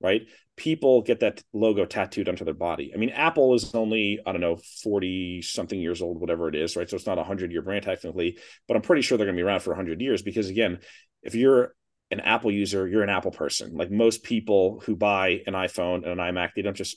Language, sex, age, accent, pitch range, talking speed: English, male, 30-49, American, 100-120 Hz, 250 wpm